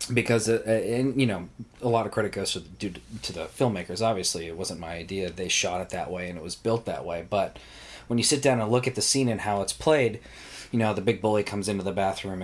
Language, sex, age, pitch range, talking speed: English, male, 30-49, 90-110 Hz, 250 wpm